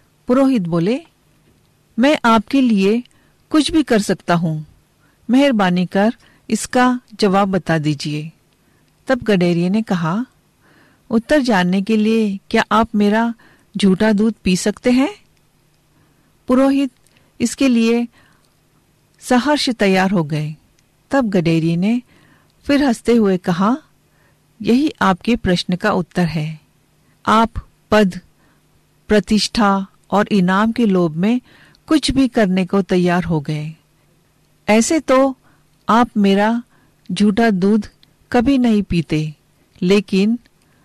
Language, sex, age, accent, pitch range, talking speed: Hindi, female, 50-69, native, 180-240 Hz, 115 wpm